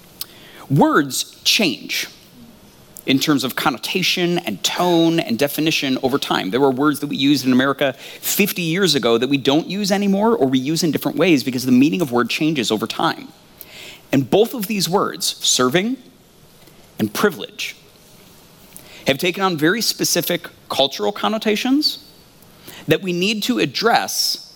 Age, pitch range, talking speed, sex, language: 30-49, 130-175 Hz, 150 wpm, male, English